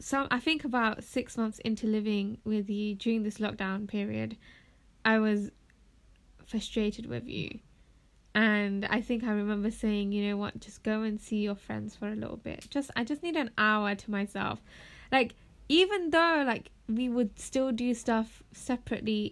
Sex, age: female, 10-29